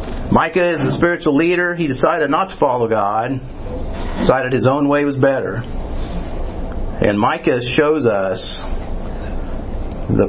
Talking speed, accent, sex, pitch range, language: 130 wpm, American, male, 95-150 Hz, English